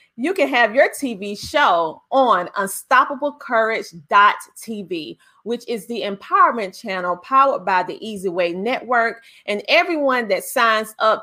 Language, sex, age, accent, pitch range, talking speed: English, female, 30-49, American, 200-270 Hz, 125 wpm